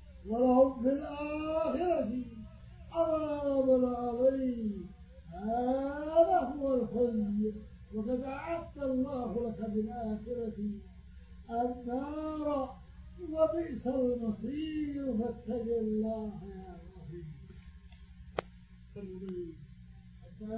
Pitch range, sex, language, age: 185-275 Hz, male, Arabic, 50-69